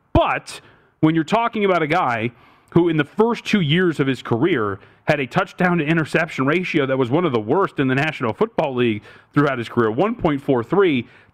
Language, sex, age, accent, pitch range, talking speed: English, male, 30-49, American, 125-160 Hz, 185 wpm